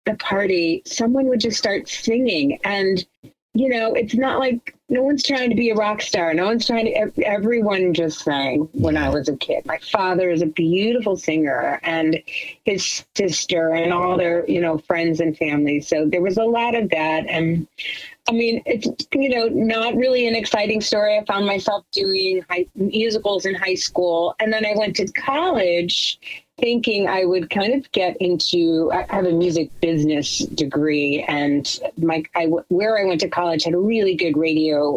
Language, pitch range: English, 165-220 Hz